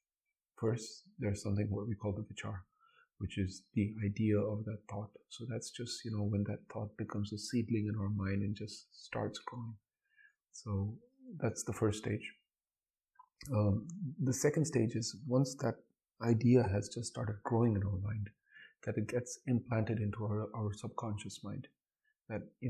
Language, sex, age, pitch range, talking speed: English, male, 30-49, 105-120 Hz, 170 wpm